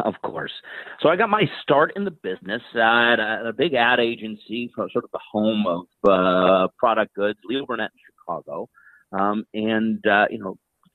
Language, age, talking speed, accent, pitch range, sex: English, 40-59, 170 wpm, American, 95-115 Hz, male